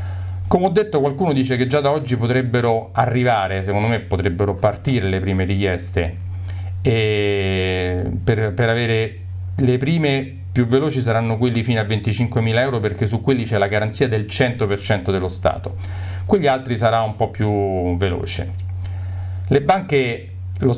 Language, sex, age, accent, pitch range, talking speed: Italian, male, 40-59, native, 95-135 Hz, 150 wpm